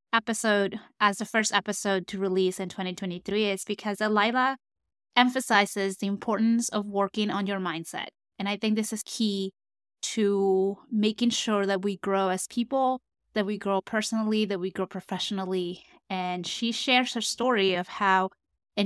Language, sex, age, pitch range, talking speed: English, female, 20-39, 190-220 Hz, 160 wpm